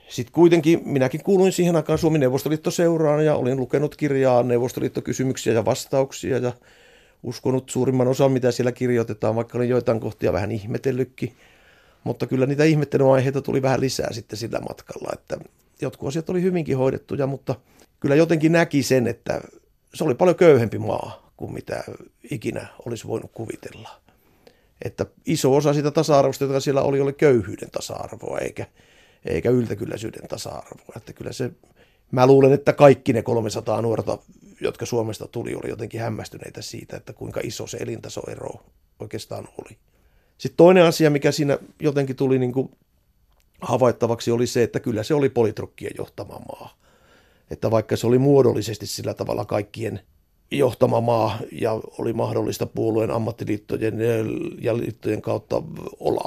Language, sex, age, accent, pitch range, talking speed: Finnish, male, 50-69, native, 115-145 Hz, 140 wpm